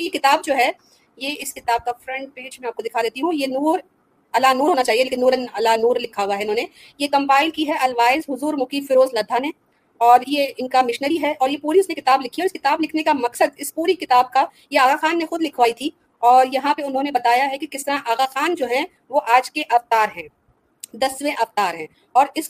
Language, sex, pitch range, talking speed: Urdu, female, 240-300 Hz, 210 wpm